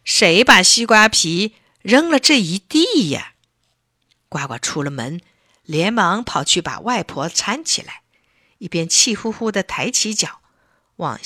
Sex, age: female, 50-69